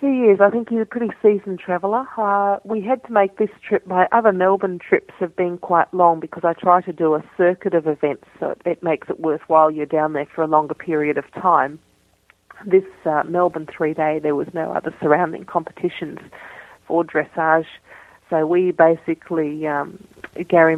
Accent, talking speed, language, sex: Australian, 190 wpm, English, female